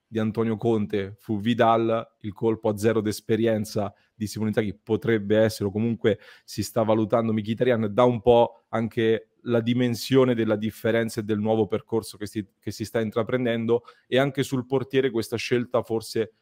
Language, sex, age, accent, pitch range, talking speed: Italian, male, 30-49, native, 105-125 Hz, 170 wpm